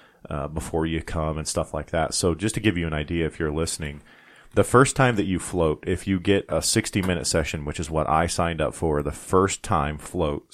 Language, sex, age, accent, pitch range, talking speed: English, male, 30-49, American, 75-90 Hz, 240 wpm